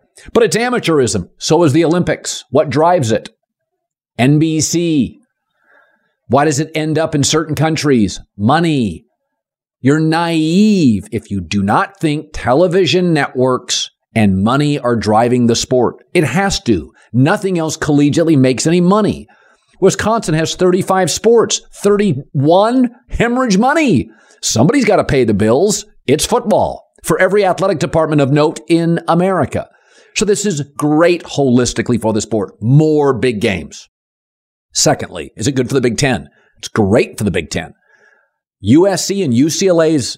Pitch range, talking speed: 135-200 Hz, 140 wpm